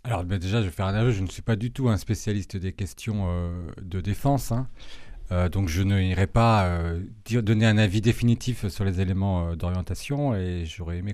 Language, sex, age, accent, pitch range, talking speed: French, male, 40-59, French, 95-115 Hz, 220 wpm